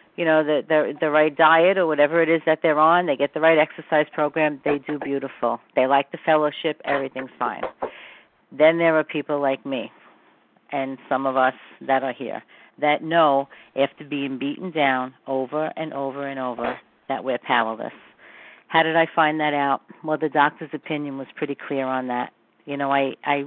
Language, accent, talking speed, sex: English, American, 190 wpm, female